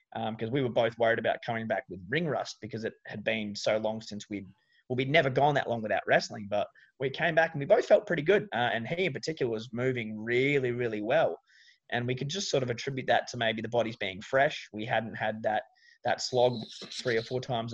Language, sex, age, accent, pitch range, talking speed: English, male, 20-39, Australian, 115-140 Hz, 245 wpm